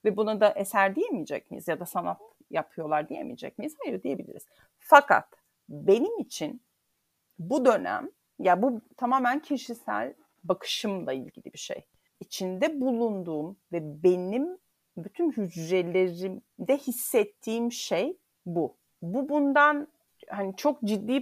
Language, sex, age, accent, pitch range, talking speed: Turkish, female, 40-59, native, 180-245 Hz, 115 wpm